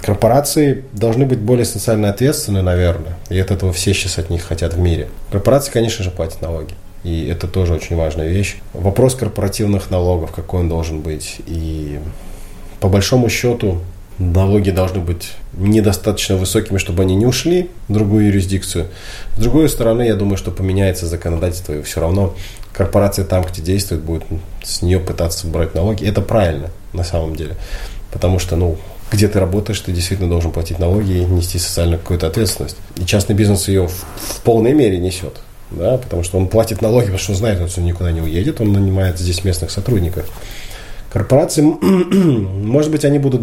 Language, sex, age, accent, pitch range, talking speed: Russian, male, 20-39, native, 85-110 Hz, 175 wpm